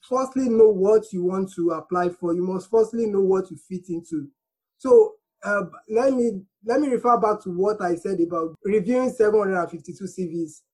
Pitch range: 185-235 Hz